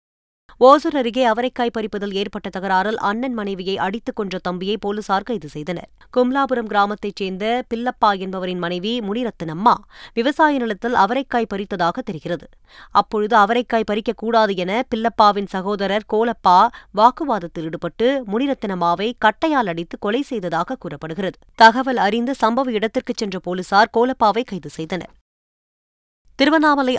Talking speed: 115 wpm